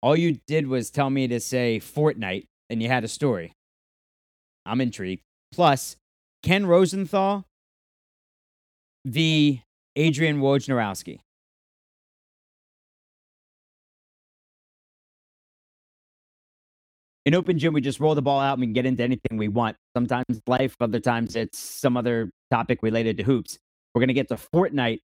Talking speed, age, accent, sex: 135 wpm, 30-49, American, male